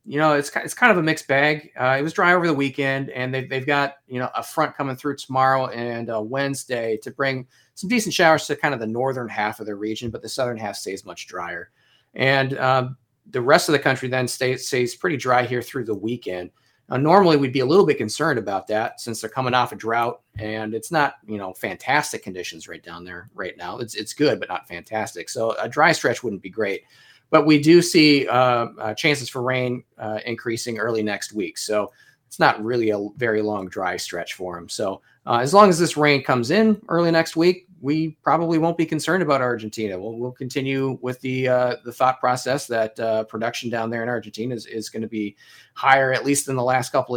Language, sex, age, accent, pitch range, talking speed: English, male, 30-49, American, 115-140 Hz, 230 wpm